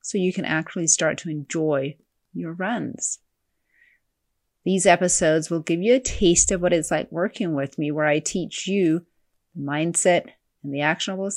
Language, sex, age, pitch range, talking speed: English, female, 30-49, 150-185 Hz, 165 wpm